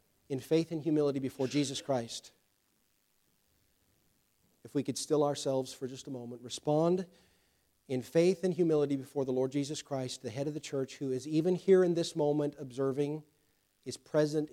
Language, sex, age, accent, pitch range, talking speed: English, male, 40-59, American, 125-150 Hz, 170 wpm